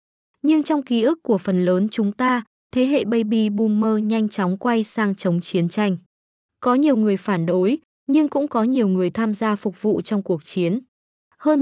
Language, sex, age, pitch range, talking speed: Vietnamese, female, 20-39, 195-240 Hz, 195 wpm